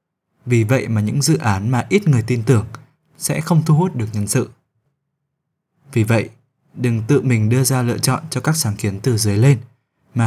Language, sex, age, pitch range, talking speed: Vietnamese, male, 20-39, 115-150 Hz, 205 wpm